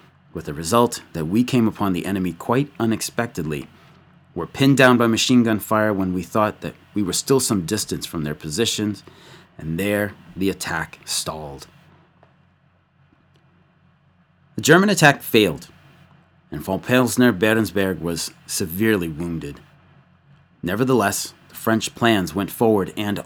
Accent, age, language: American, 30-49, English